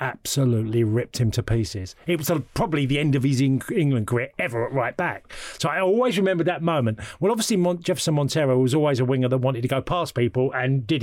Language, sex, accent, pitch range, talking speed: English, male, British, 125-155 Hz, 230 wpm